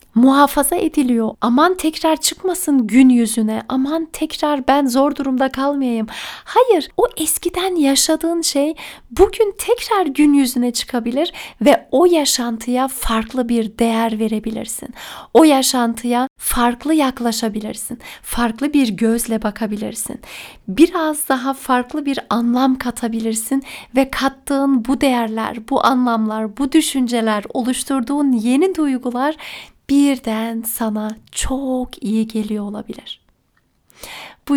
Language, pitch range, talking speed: Turkish, 230-285 Hz, 110 wpm